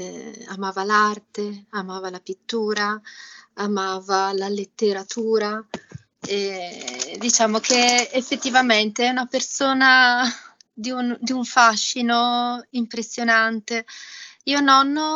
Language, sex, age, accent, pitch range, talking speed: Italian, female, 20-39, native, 210-245 Hz, 85 wpm